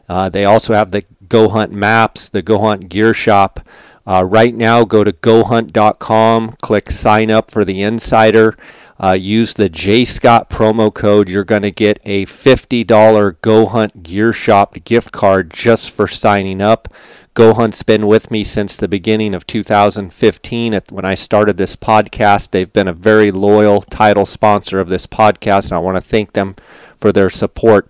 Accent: American